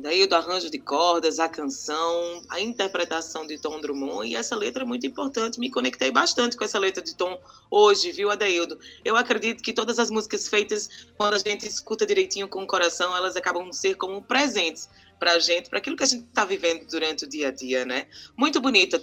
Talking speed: 210 wpm